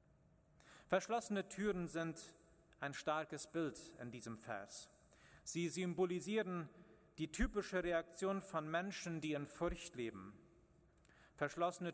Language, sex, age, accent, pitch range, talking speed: German, male, 40-59, German, 150-180 Hz, 105 wpm